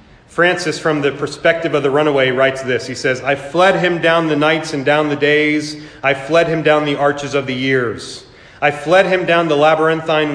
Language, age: English, 40-59